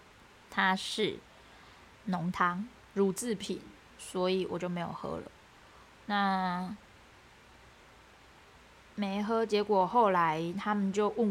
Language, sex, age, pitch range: Chinese, female, 20-39, 190-240 Hz